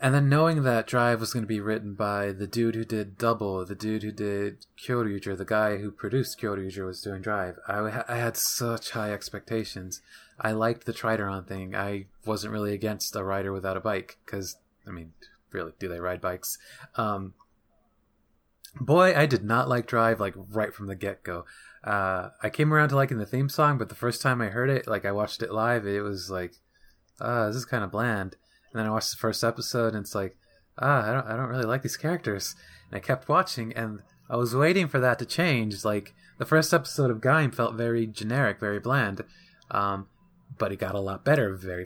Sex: male